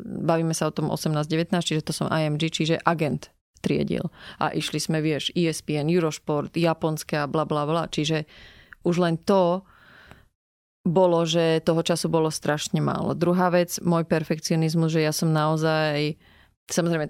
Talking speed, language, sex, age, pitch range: 145 wpm, Slovak, female, 30-49, 155-175 Hz